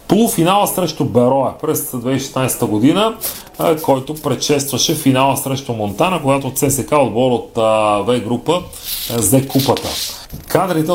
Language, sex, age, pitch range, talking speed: Bulgarian, male, 30-49, 115-140 Hz, 110 wpm